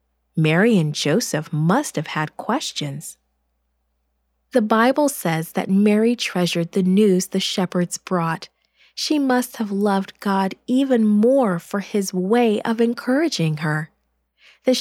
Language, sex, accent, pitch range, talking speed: English, female, American, 170-235 Hz, 130 wpm